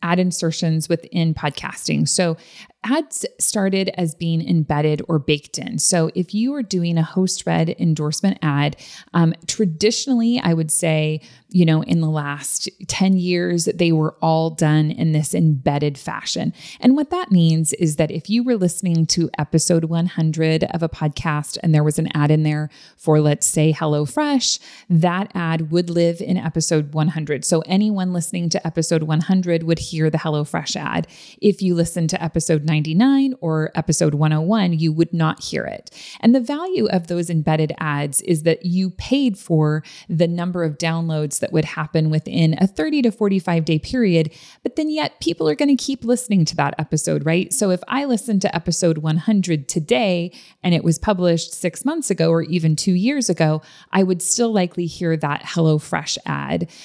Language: English